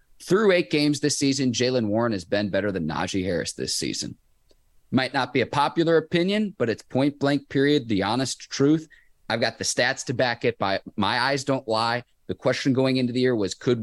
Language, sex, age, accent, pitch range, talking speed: English, male, 30-49, American, 110-135 Hz, 210 wpm